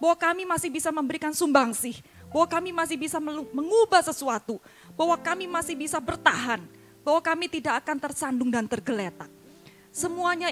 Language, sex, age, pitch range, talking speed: Indonesian, female, 20-39, 230-330 Hz, 145 wpm